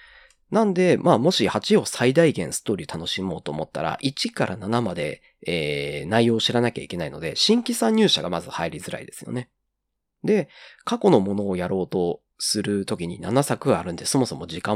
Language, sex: Japanese, male